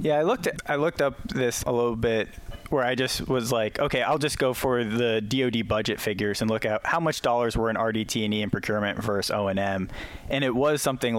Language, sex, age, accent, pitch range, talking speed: English, male, 20-39, American, 105-125 Hz, 245 wpm